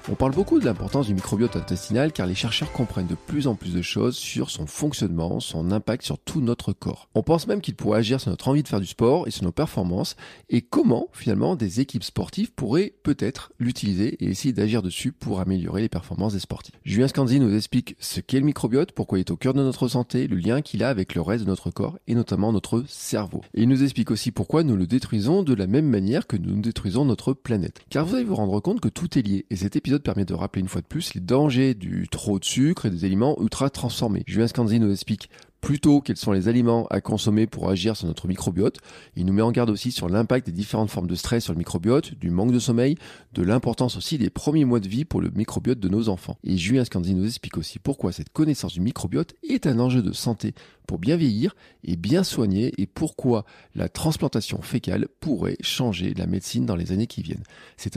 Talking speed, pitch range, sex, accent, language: 235 wpm, 100-130 Hz, male, French, French